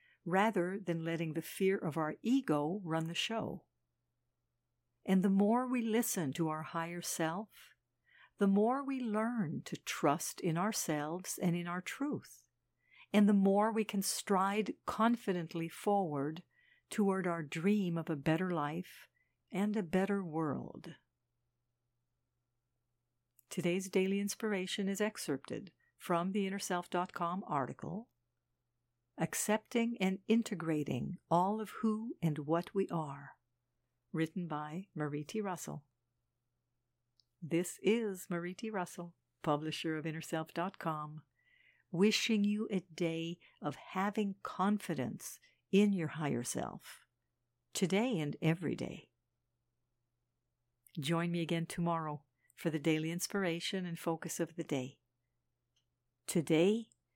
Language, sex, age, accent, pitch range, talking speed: English, female, 60-79, American, 145-200 Hz, 115 wpm